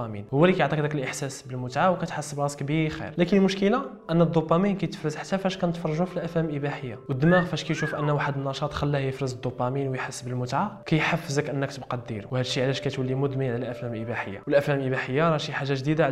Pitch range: 135-170 Hz